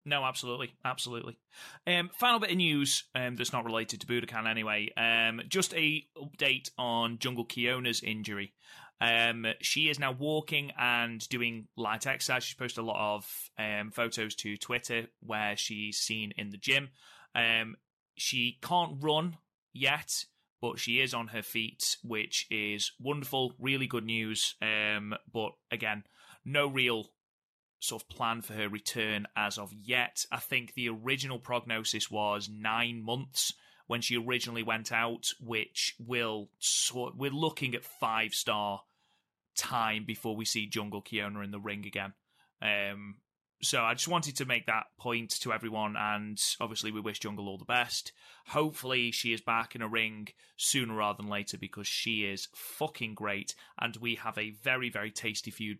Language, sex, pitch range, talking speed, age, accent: English, male, 110-130 Hz, 165 wpm, 30-49, British